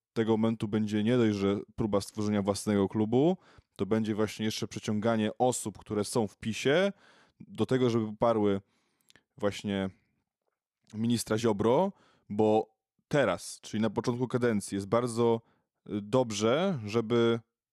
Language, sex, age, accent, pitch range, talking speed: Polish, male, 20-39, native, 105-120 Hz, 125 wpm